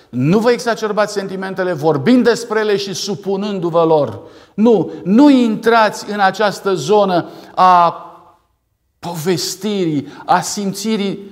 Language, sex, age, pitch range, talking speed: Romanian, male, 50-69, 145-205 Hz, 105 wpm